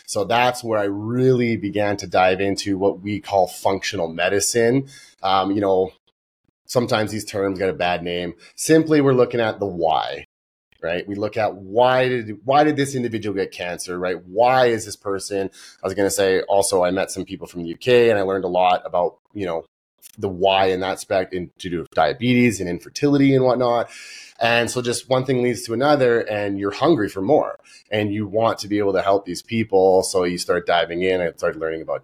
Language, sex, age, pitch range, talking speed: English, male, 30-49, 95-120 Hz, 210 wpm